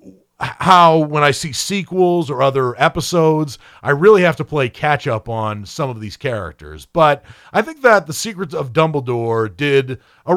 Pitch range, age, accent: 115-155 Hz, 40-59, American